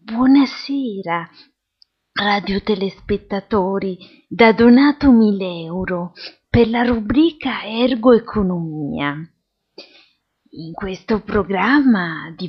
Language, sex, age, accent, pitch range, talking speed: Italian, female, 30-49, native, 175-250 Hz, 75 wpm